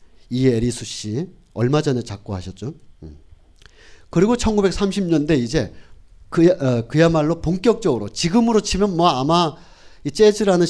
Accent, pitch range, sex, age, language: native, 110-170 Hz, male, 40-59, Korean